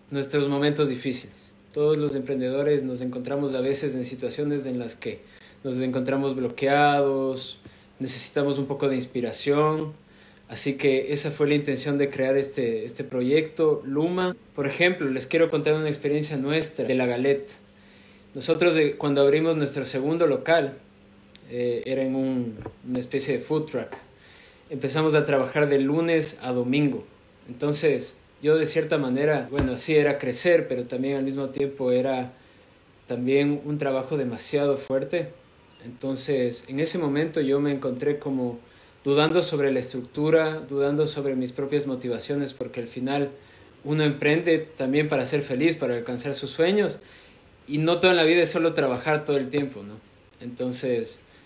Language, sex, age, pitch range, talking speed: Spanish, male, 20-39, 130-150 Hz, 155 wpm